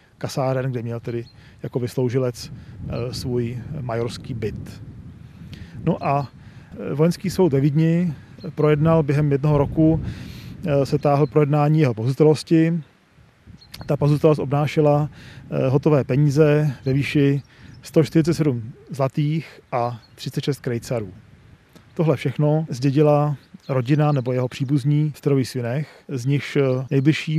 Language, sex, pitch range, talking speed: Czech, male, 130-150 Hz, 105 wpm